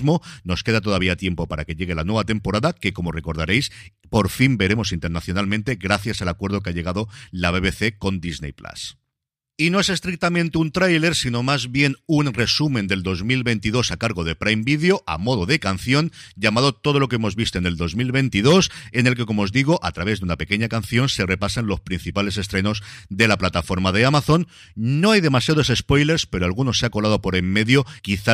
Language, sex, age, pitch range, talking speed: Spanish, male, 50-69, 95-130 Hz, 200 wpm